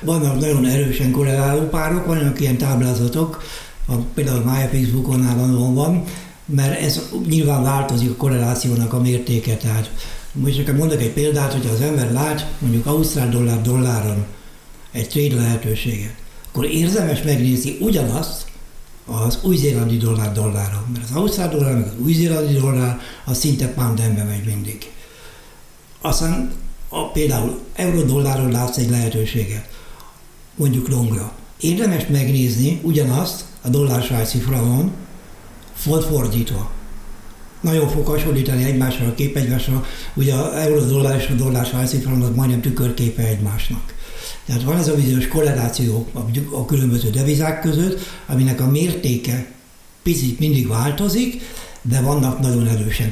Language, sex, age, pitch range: Hungarian, male, 60-79, 115-145 Hz